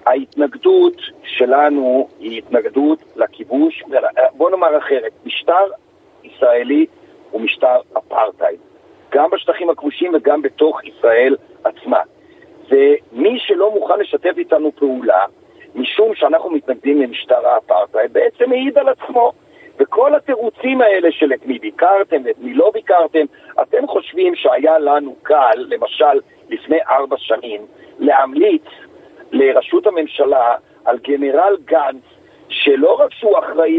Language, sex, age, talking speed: Hebrew, male, 50-69, 115 wpm